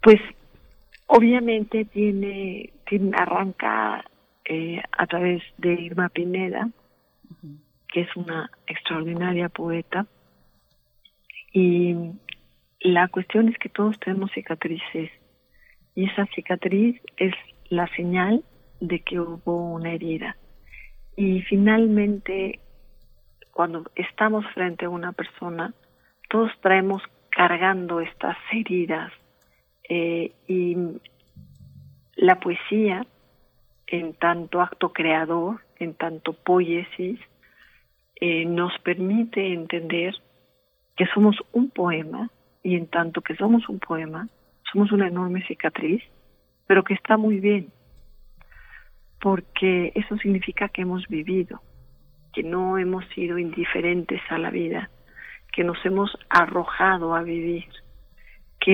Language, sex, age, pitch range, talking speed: Spanish, female, 50-69, 170-200 Hz, 105 wpm